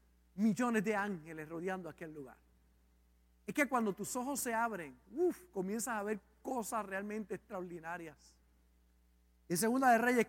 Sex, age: male, 50-69